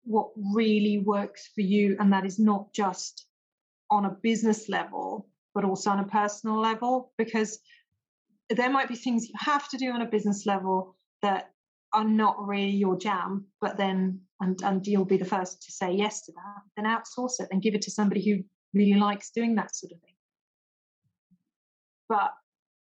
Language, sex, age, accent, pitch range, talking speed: English, female, 40-59, British, 195-220 Hz, 180 wpm